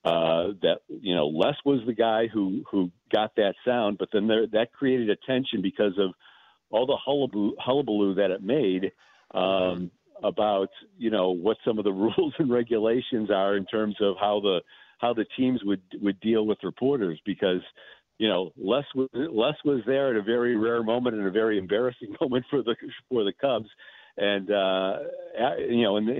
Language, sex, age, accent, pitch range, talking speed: English, male, 50-69, American, 95-120 Hz, 190 wpm